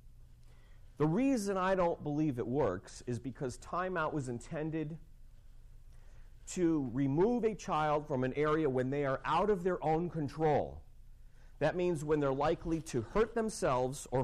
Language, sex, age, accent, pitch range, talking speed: English, male, 40-59, American, 120-165 Hz, 150 wpm